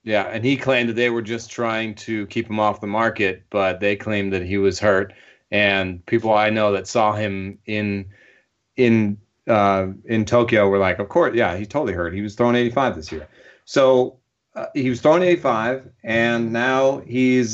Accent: American